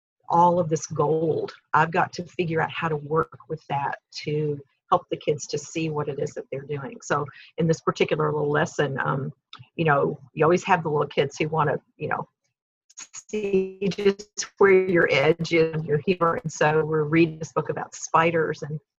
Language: English